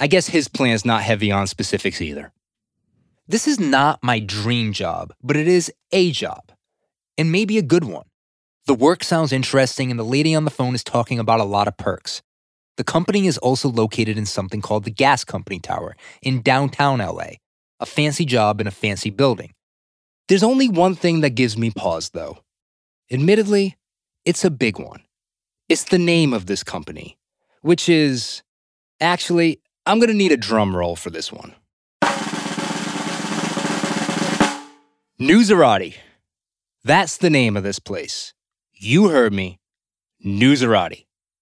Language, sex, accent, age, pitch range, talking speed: English, male, American, 20-39, 110-160 Hz, 155 wpm